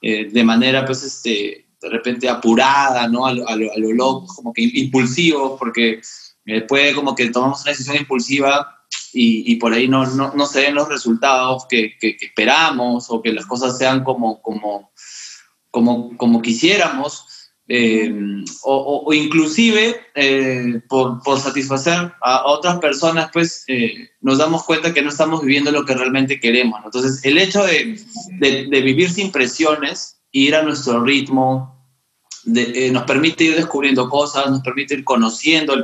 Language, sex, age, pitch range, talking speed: Spanish, male, 20-39, 125-155 Hz, 170 wpm